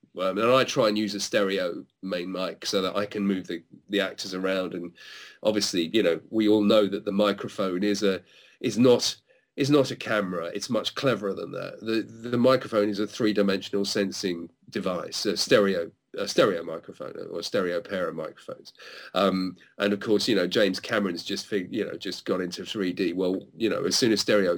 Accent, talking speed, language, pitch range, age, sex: British, 210 wpm, English, 95-140 Hz, 40-59, male